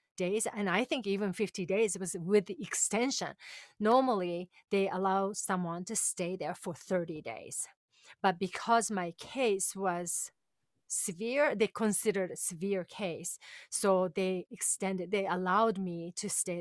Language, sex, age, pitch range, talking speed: English, female, 30-49, 185-215 Hz, 150 wpm